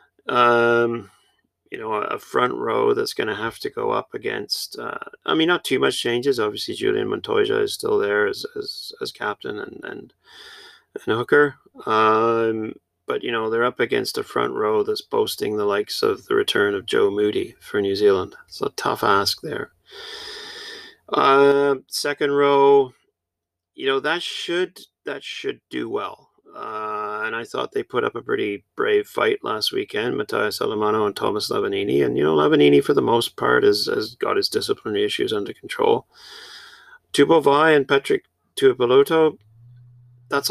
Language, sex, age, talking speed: English, male, 30-49, 170 wpm